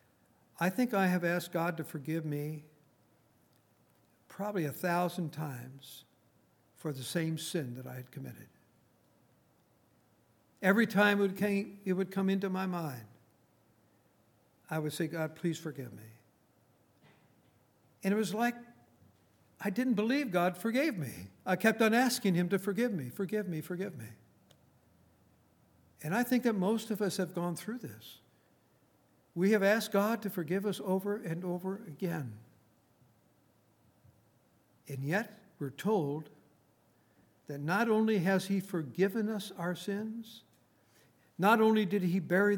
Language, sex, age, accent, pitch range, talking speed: English, male, 60-79, American, 125-200 Hz, 140 wpm